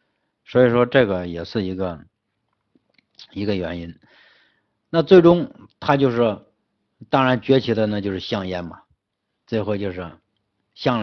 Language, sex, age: Chinese, male, 60-79